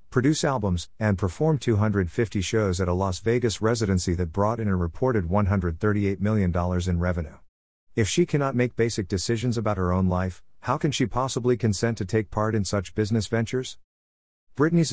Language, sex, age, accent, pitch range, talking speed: English, male, 50-69, American, 90-115 Hz, 175 wpm